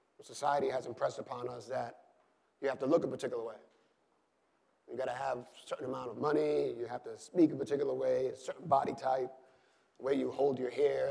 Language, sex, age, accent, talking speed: English, male, 30-49, American, 210 wpm